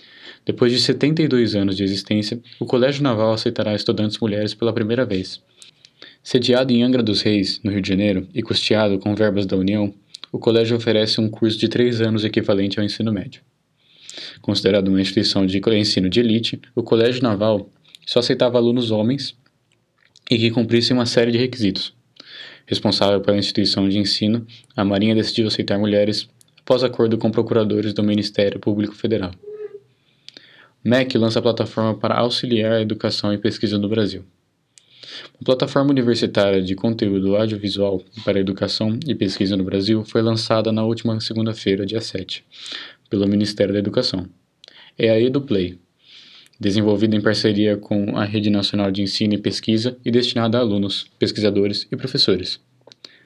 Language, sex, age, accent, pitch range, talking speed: Portuguese, male, 20-39, Brazilian, 100-120 Hz, 155 wpm